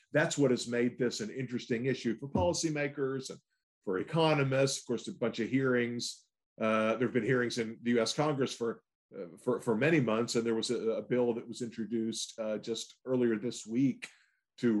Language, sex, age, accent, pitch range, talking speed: English, male, 50-69, American, 115-140 Hz, 200 wpm